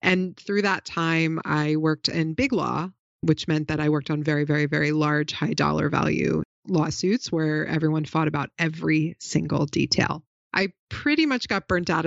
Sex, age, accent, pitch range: female, 30-49, American, 155-170 Hz